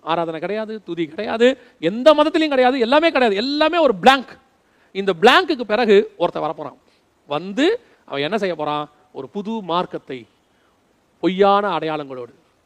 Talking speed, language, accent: 130 wpm, Tamil, native